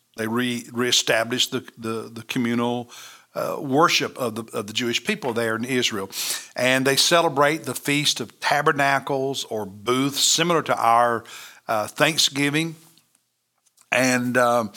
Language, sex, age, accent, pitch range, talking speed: English, male, 60-79, American, 120-145 Hz, 135 wpm